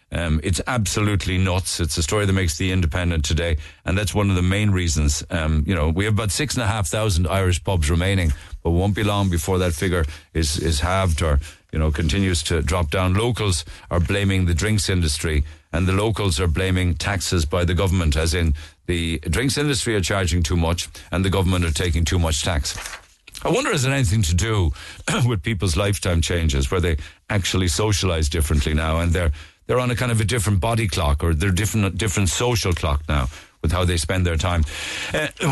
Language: English